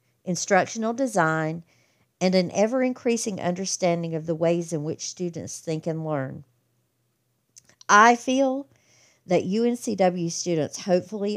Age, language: 50-69, English